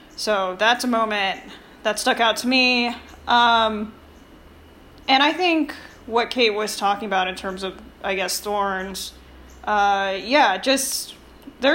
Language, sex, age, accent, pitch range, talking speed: English, female, 10-29, American, 200-255 Hz, 145 wpm